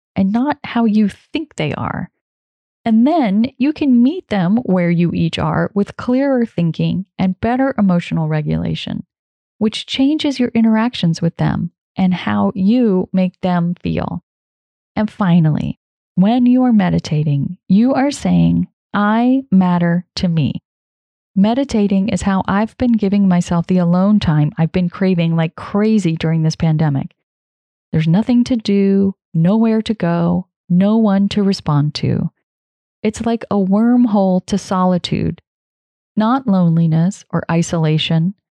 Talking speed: 140 wpm